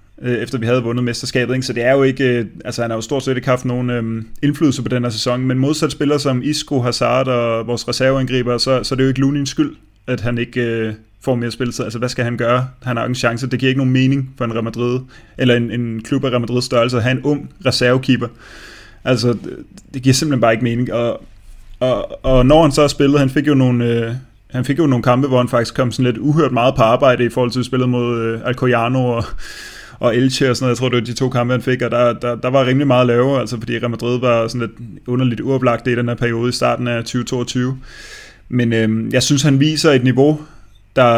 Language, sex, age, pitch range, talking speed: Danish, male, 20-39, 120-130 Hz, 250 wpm